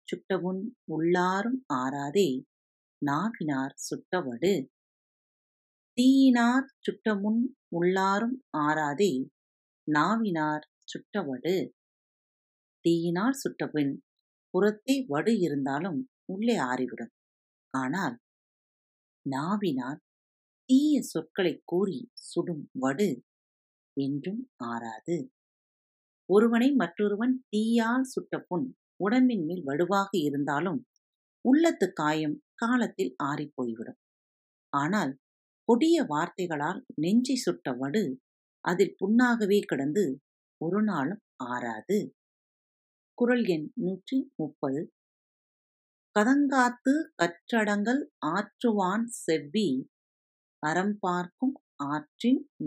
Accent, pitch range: native, 150-240 Hz